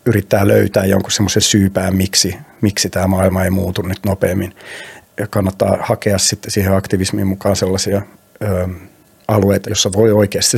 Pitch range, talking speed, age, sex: 100-120 Hz, 145 wpm, 30-49, male